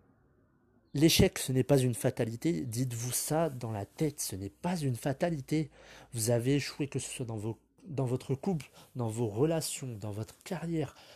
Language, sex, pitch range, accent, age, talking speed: French, male, 115-155 Hz, French, 30-49, 175 wpm